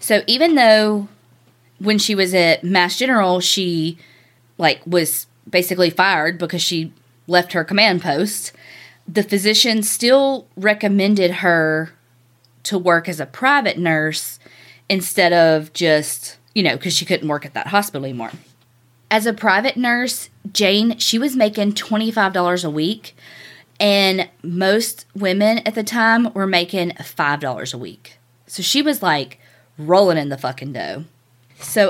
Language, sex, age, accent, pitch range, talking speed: English, female, 20-39, American, 150-210 Hz, 145 wpm